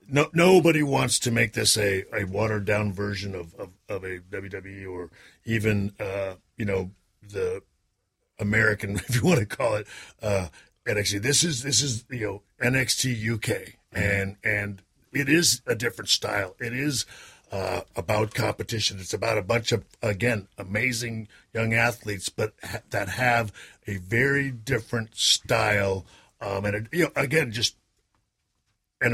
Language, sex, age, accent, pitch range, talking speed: English, male, 50-69, American, 105-130 Hz, 155 wpm